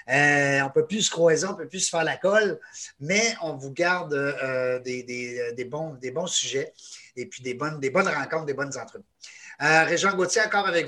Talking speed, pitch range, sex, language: 230 wpm, 135-180 Hz, male, French